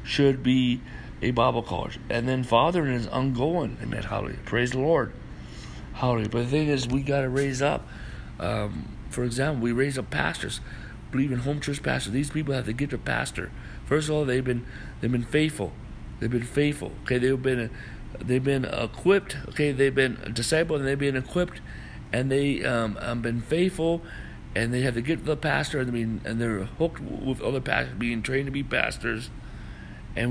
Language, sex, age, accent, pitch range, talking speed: English, male, 60-79, American, 120-140 Hz, 190 wpm